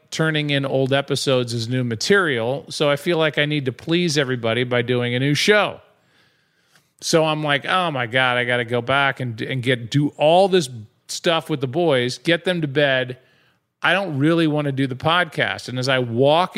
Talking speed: 210 wpm